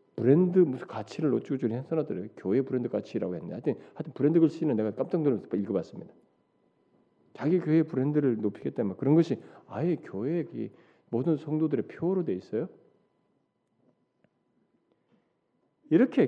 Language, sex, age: Korean, male, 40-59